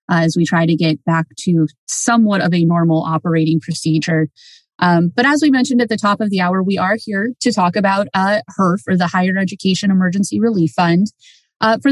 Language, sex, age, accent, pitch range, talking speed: English, female, 30-49, American, 175-215 Hz, 210 wpm